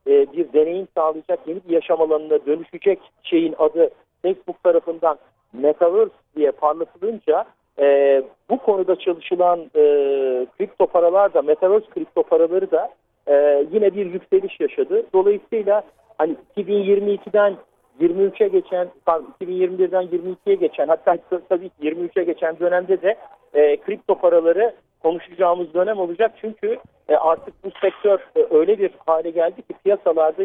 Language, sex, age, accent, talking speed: Turkish, male, 50-69, native, 115 wpm